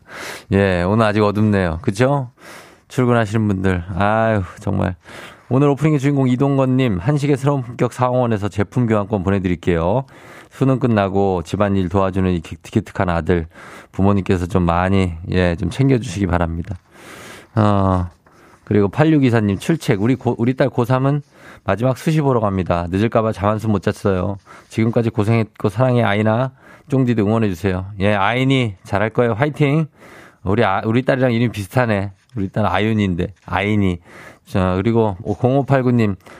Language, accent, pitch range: Korean, native, 100-130 Hz